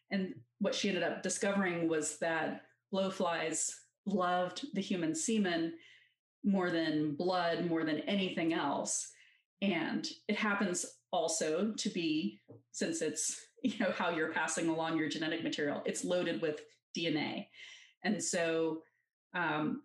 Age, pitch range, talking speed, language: 30-49, 165-215 Hz, 135 wpm, English